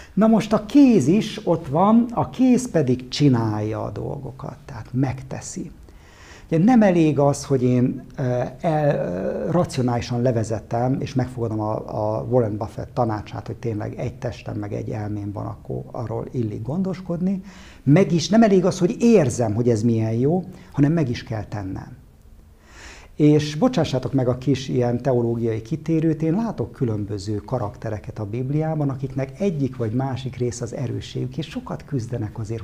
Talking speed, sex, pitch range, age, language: 145 wpm, male, 110-155 Hz, 60-79, Hungarian